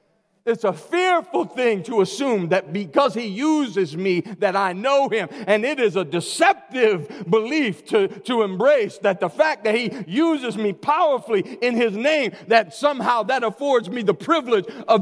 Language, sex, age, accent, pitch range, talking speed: English, male, 40-59, American, 135-230 Hz, 170 wpm